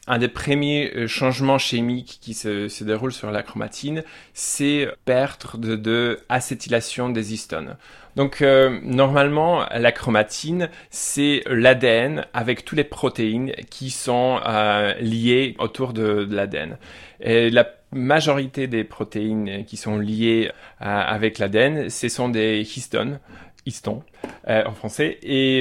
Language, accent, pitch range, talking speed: French, French, 110-130 Hz, 140 wpm